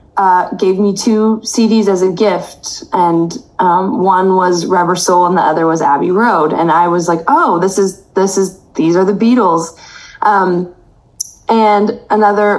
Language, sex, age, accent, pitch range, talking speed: English, female, 20-39, American, 175-220 Hz, 170 wpm